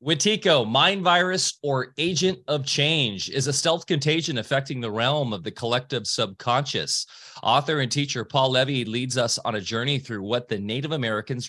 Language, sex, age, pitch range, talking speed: English, male, 30-49, 120-150 Hz, 170 wpm